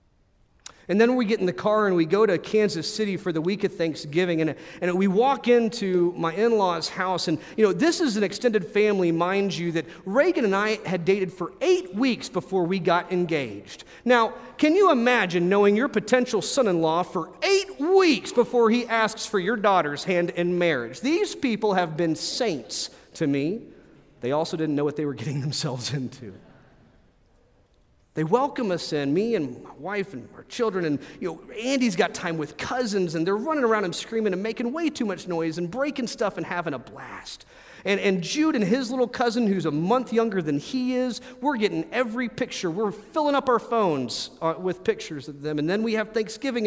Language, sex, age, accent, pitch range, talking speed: English, male, 40-59, American, 175-245 Hz, 200 wpm